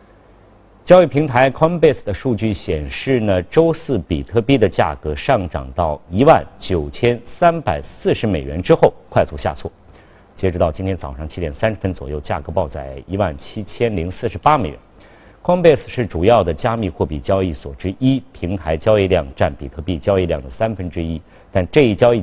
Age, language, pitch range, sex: 50-69, Chinese, 75-105 Hz, male